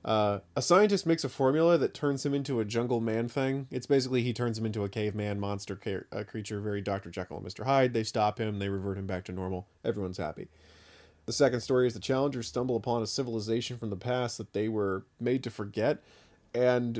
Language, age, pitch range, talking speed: English, 30-49, 105-130 Hz, 215 wpm